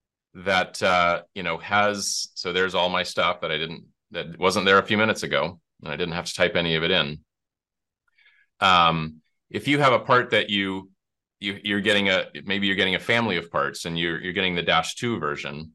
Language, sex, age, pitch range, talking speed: English, male, 30-49, 85-110 Hz, 215 wpm